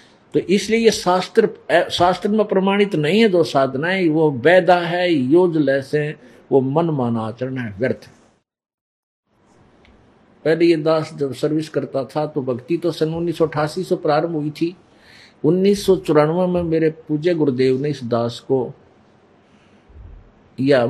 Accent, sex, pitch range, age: native, male, 130-165 Hz, 50-69